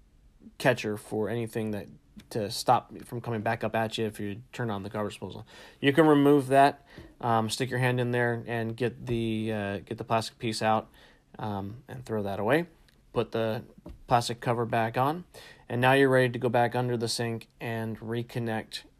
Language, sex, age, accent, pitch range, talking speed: English, male, 40-59, American, 110-130 Hz, 195 wpm